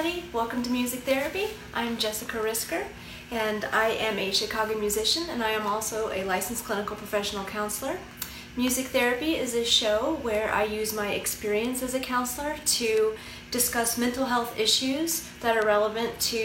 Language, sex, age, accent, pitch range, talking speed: English, female, 30-49, American, 210-250 Hz, 160 wpm